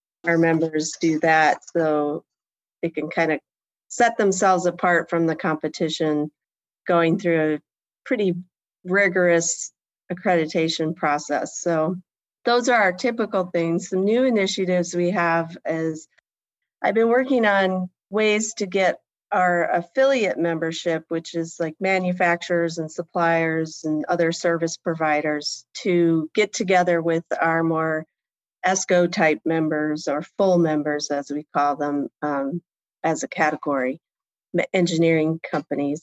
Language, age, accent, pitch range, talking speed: English, 40-59, American, 155-180 Hz, 125 wpm